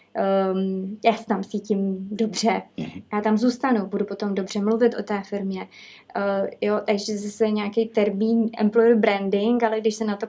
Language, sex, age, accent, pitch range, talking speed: Czech, female, 20-39, native, 200-225 Hz, 170 wpm